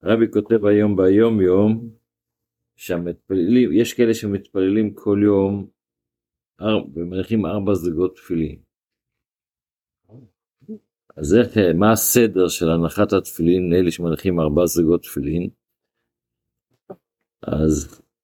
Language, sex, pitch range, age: Hebrew, male, 90-110 Hz, 50-69